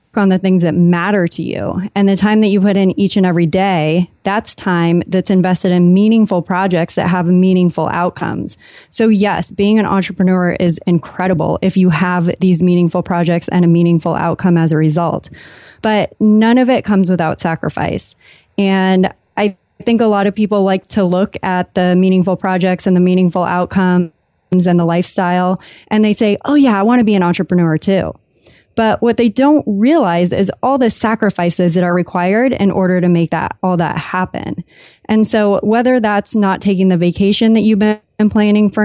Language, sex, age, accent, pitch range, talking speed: English, female, 20-39, American, 180-205 Hz, 190 wpm